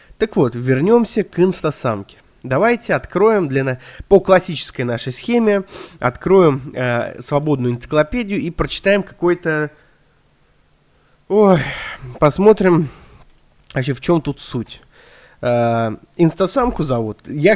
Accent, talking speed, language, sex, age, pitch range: native, 105 wpm, Russian, male, 20-39, 125-185 Hz